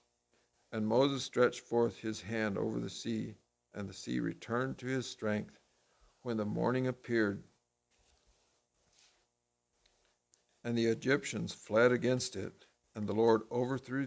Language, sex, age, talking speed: English, male, 60-79, 130 wpm